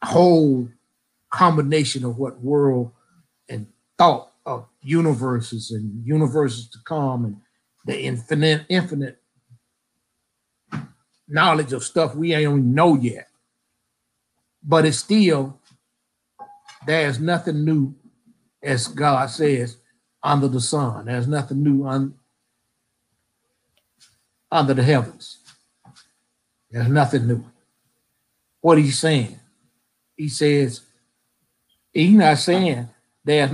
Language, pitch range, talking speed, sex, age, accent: English, 120-155 Hz, 100 wpm, male, 60-79, American